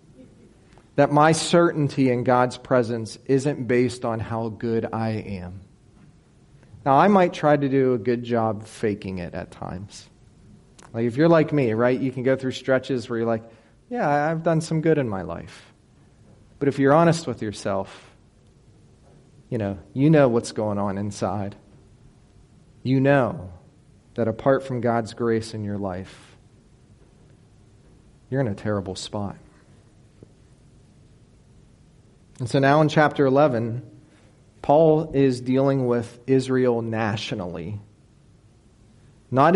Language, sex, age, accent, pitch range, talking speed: English, male, 40-59, American, 110-145 Hz, 135 wpm